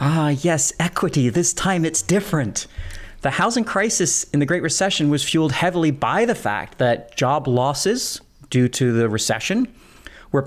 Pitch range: 125-160 Hz